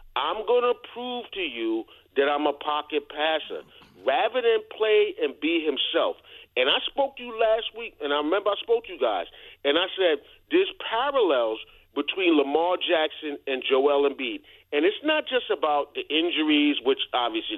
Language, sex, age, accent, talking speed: English, male, 40-59, American, 180 wpm